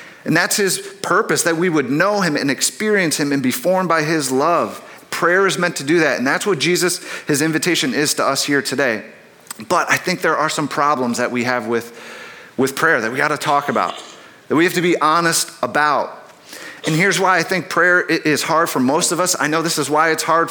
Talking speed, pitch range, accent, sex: 235 wpm, 145-185 Hz, American, male